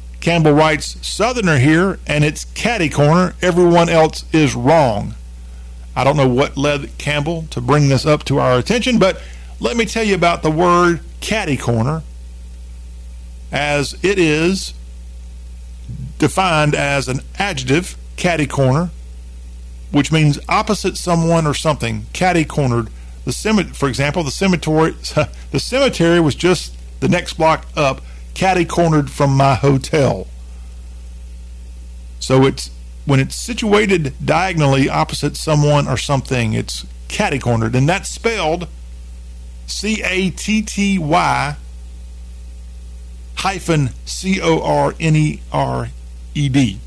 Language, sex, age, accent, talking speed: English, male, 50-69, American, 115 wpm